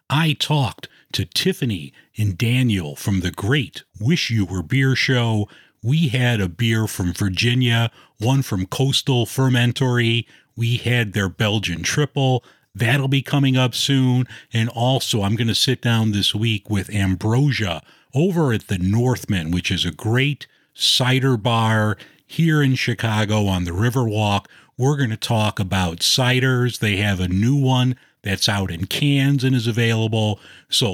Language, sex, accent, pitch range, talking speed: English, male, American, 100-135 Hz, 155 wpm